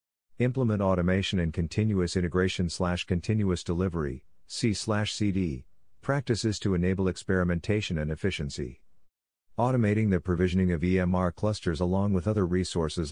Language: English